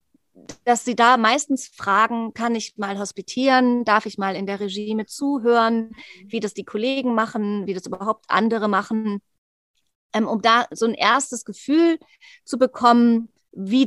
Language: German